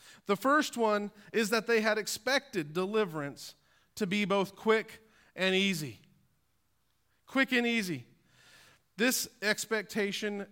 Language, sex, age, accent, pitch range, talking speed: English, male, 40-59, American, 150-250 Hz, 115 wpm